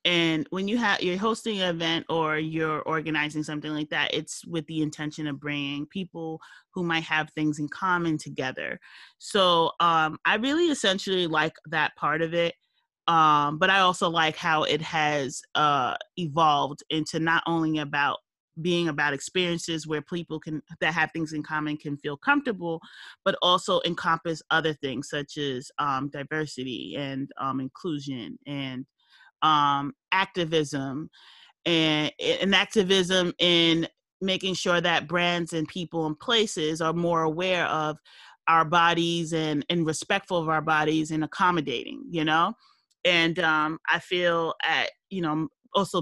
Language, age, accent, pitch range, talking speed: English, 30-49, American, 155-180 Hz, 155 wpm